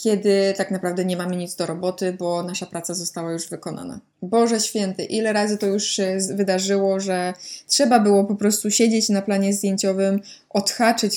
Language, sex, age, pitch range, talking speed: Polish, female, 20-39, 190-230 Hz, 170 wpm